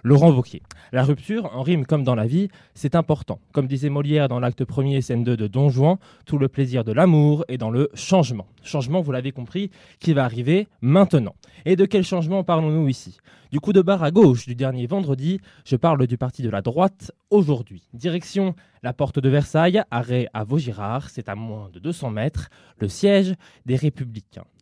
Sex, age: male, 20-39